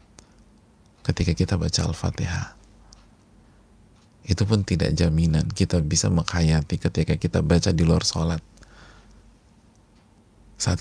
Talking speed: 100 wpm